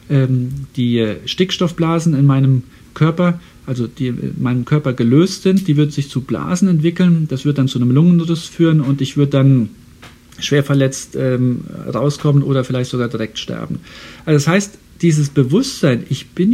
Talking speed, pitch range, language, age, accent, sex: 165 wpm, 130-165 Hz, German, 50-69, German, male